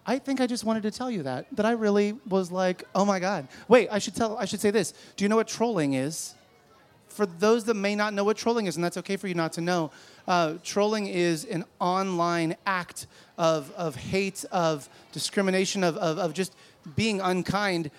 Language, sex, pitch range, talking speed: English, male, 160-200 Hz, 215 wpm